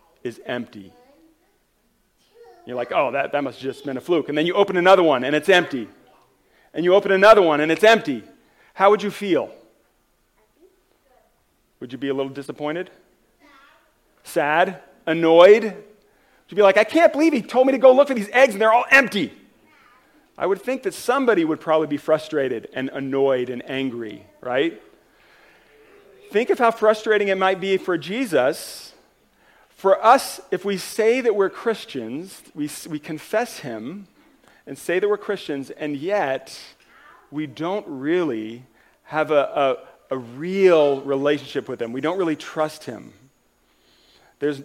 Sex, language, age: male, English, 40-59